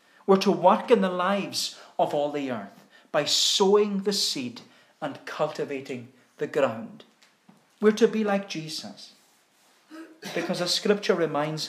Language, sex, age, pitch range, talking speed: English, male, 40-59, 150-215 Hz, 140 wpm